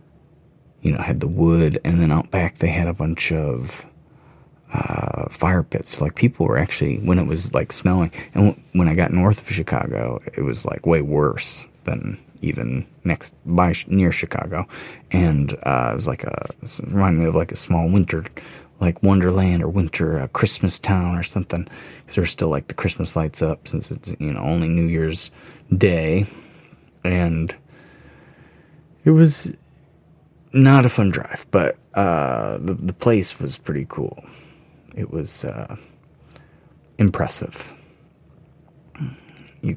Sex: male